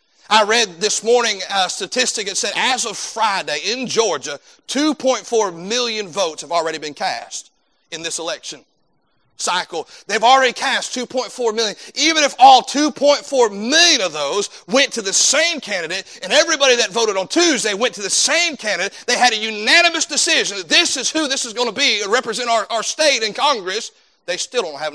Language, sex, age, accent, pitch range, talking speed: English, male, 40-59, American, 215-305 Hz, 185 wpm